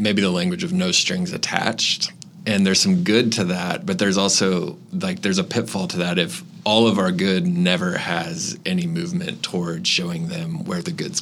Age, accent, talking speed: 30-49, American, 200 wpm